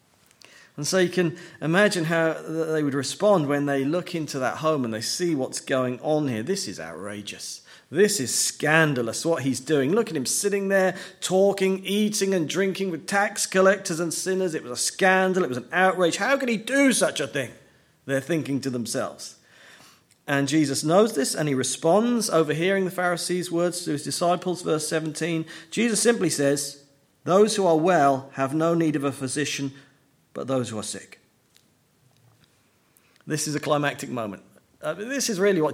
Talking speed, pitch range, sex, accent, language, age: 180 wpm, 140-180 Hz, male, British, English, 40-59